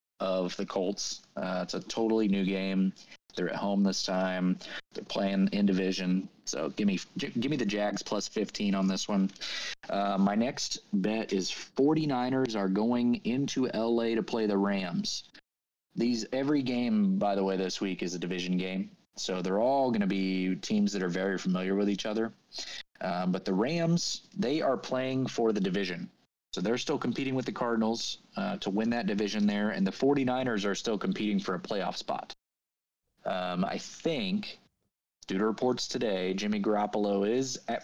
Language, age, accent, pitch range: English, 30-49, American, 95-115 Hz